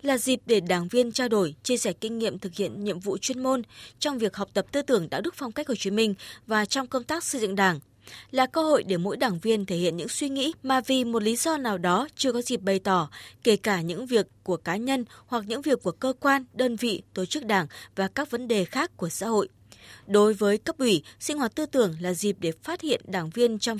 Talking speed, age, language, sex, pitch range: 260 wpm, 20-39, Vietnamese, female, 190-255 Hz